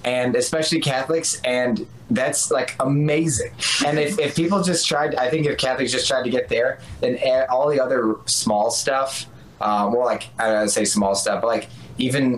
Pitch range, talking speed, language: 110-145 Hz, 200 wpm, English